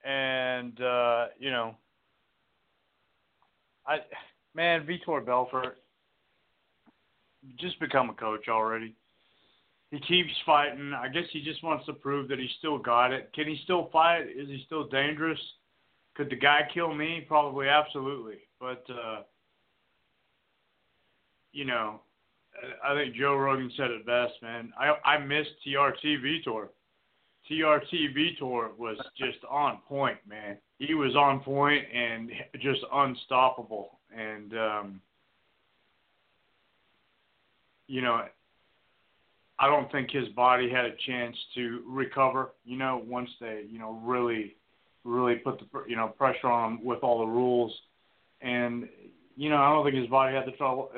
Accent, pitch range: American, 120-145 Hz